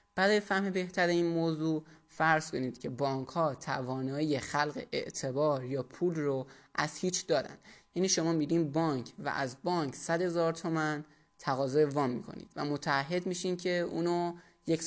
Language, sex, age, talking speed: Persian, male, 20-39, 150 wpm